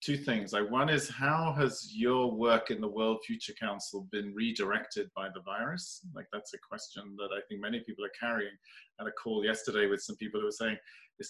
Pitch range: 105-125 Hz